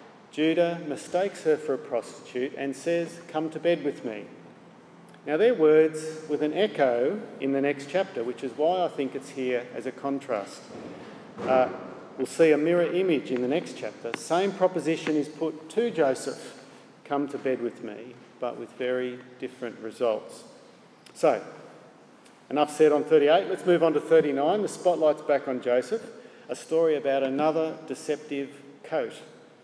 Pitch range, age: 130-165 Hz, 50-69